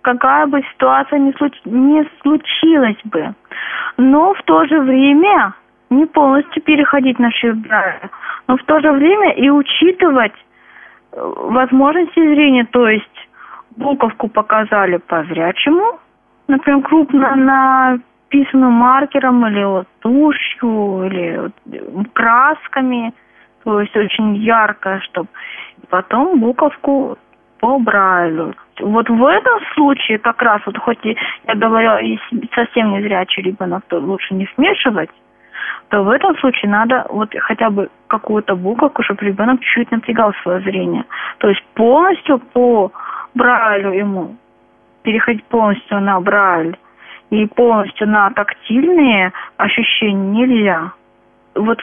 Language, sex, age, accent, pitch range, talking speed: Russian, female, 20-39, native, 205-275 Hz, 115 wpm